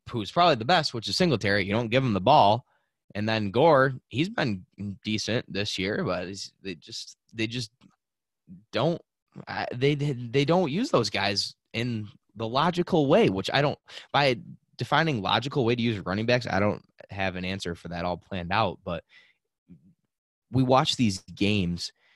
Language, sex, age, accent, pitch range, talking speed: English, male, 20-39, American, 90-125 Hz, 170 wpm